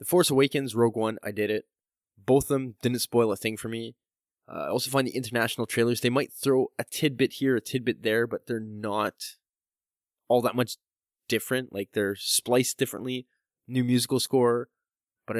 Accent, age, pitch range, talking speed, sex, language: American, 20-39, 110-135 Hz, 185 wpm, male, English